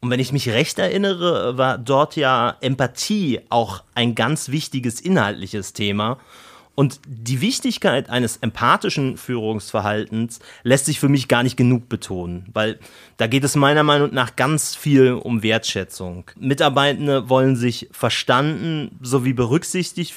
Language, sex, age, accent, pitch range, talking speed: German, male, 30-49, German, 115-150 Hz, 140 wpm